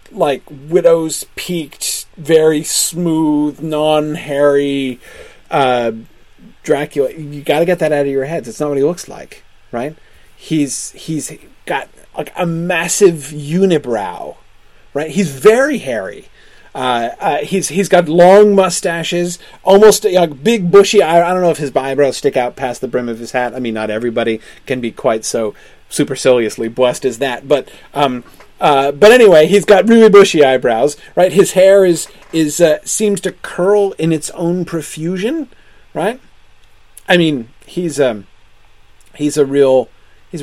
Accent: American